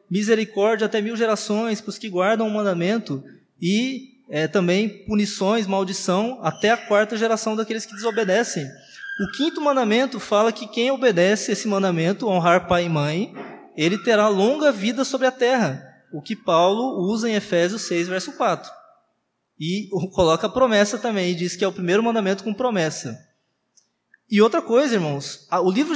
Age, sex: 20-39, male